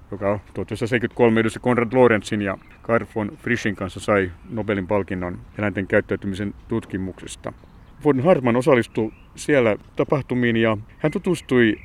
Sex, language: male, Finnish